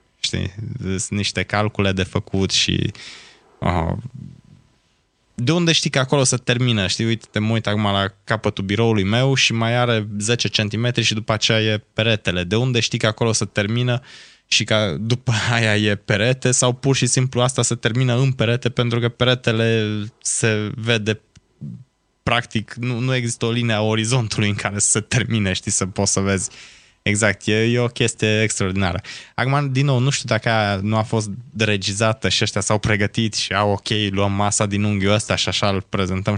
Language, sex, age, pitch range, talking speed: Romanian, male, 20-39, 100-120 Hz, 180 wpm